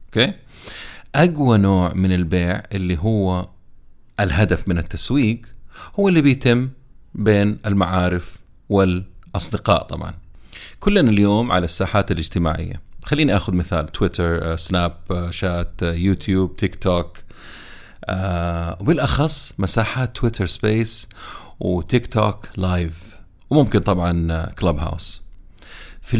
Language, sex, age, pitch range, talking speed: Arabic, male, 30-49, 90-120 Hz, 100 wpm